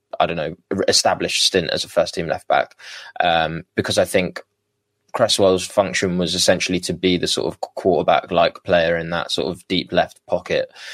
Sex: male